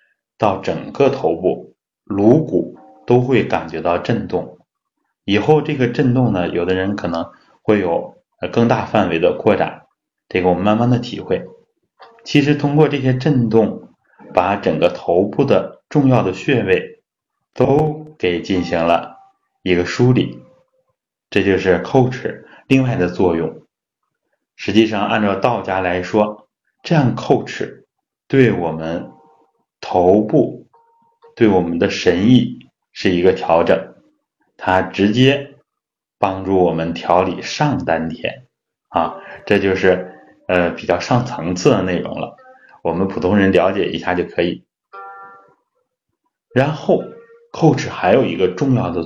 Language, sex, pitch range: Chinese, male, 90-145 Hz